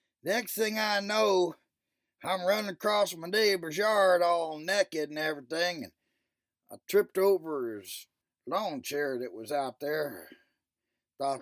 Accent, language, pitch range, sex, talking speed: American, English, 145-185 Hz, male, 135 wpm